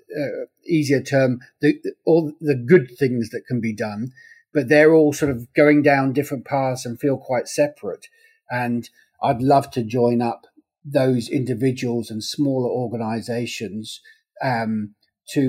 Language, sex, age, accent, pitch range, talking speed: English, male, 40-59, British, 115-140 Hz, 150 wpm